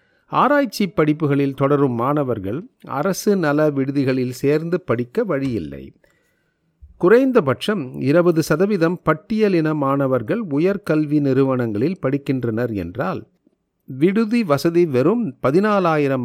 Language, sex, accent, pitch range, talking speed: Tamil, male, native, 125-175 Hz, 85 wpm